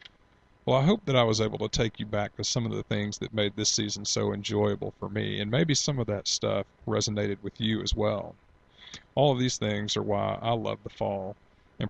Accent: American